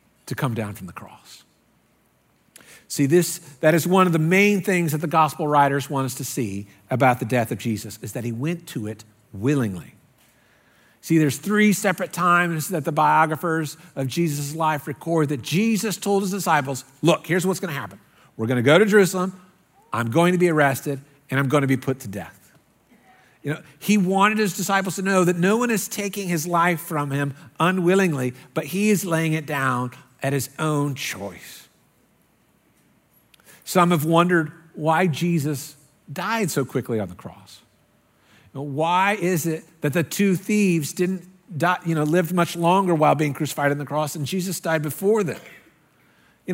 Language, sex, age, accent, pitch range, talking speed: English, male, 50-69, American, 140-175 Hz, 185 wpm